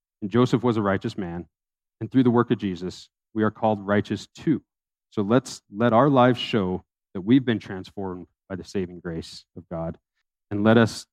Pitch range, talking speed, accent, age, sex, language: 95-115 Hz, 195 wpm, American, 30-49, male, English